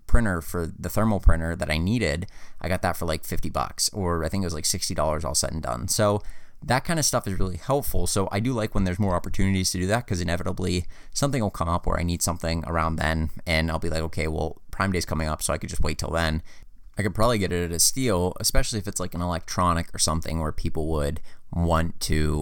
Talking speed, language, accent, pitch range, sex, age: 255 wpm, English, American, 80-95 Hz, male, 20-39